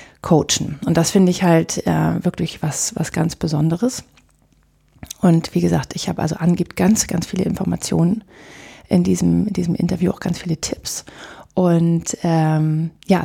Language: German